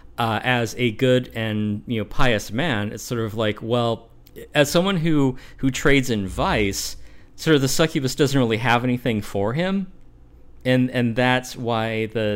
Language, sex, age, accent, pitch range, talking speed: English, male, 40-59, American, 100-125 Hz, 175 wpm